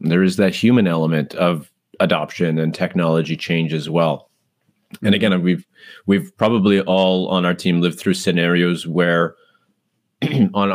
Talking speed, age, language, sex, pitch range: 145 wpm, 30-49, English, male, 85-100 Hz